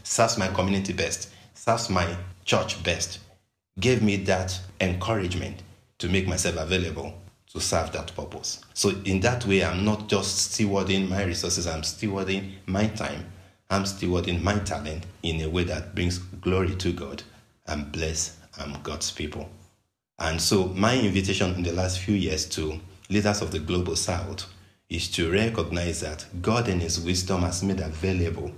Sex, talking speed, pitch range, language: male, 165 wpm, 85-100 Hz, English